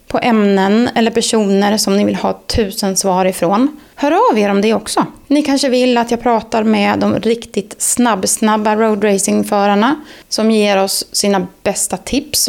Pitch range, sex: 200-245 Hz, female